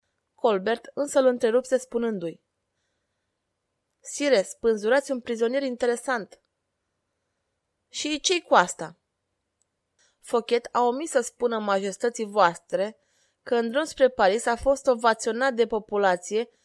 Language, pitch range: Romanian, 195-270 Hz